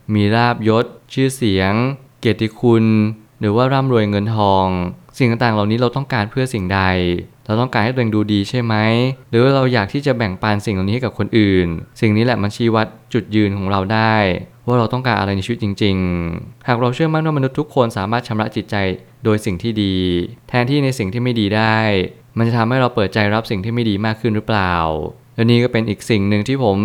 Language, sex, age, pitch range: Thai, male, 20-39, 100-125 Hz